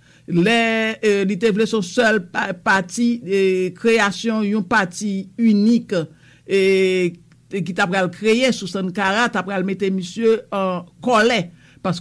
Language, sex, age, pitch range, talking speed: English, male, 60-79, 180-220 Hz, 140 wpm